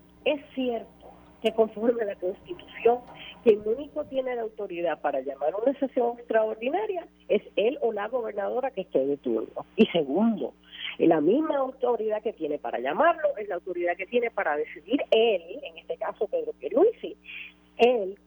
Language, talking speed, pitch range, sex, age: Spanish, 165 wpm, 195-280 Hz, female, 40-59